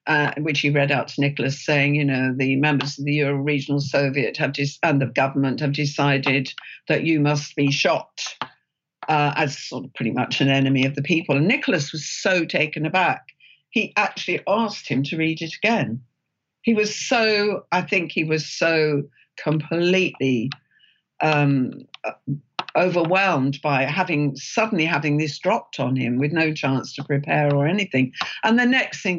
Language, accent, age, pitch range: English, British, 50-69, 140-175 Hz